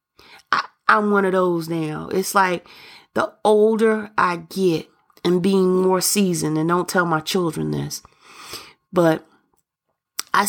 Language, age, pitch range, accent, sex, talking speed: English, 30-49, 180-225 Hz, American, female, 130 wpm